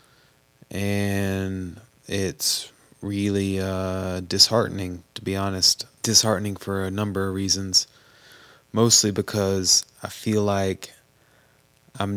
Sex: male